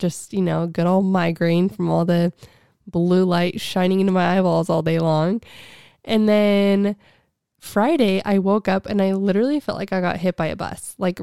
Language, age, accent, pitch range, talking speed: English, 20-39, American, 175-205 Hz, 190 wpm